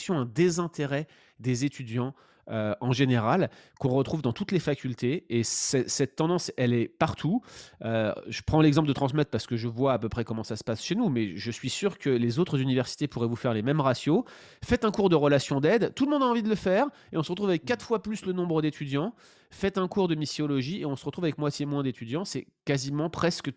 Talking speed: 240 wpm